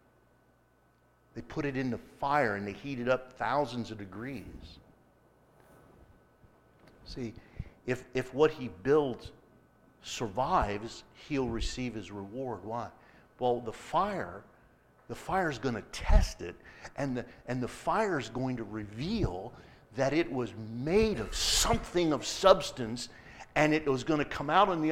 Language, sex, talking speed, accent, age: English, male, 150 wpm, American, 50-69